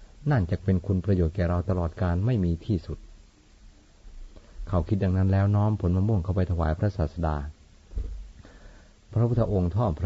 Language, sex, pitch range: Thai, male, 80-100 Hz